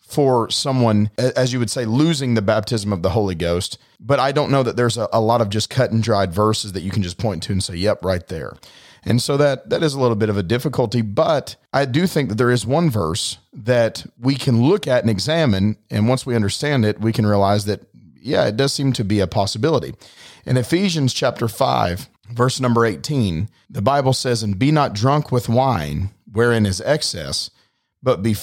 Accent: American